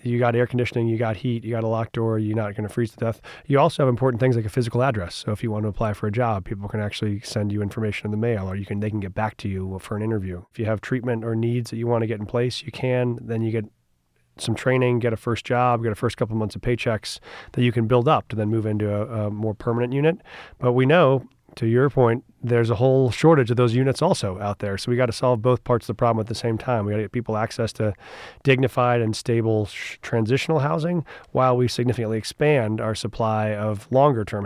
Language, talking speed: English, 265 wpm